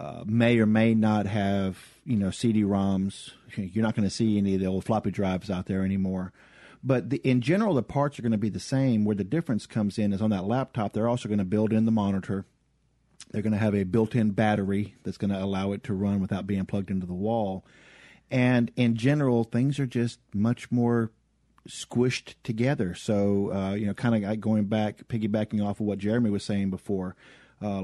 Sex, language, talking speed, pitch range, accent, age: male, English, 215 wpm, 100-115 Hz, American, 40-59